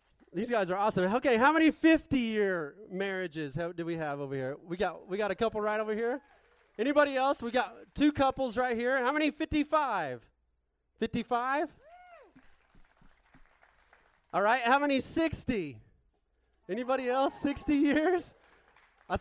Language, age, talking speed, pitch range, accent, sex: English, 30-49, 140 wpm, 200-280 Hz, American, male